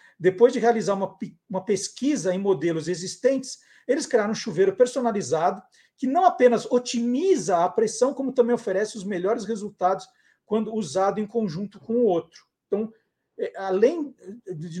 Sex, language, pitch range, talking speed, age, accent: male, Portuguese, 190-245 Hz, 145 wpm, 50-69, Brazilian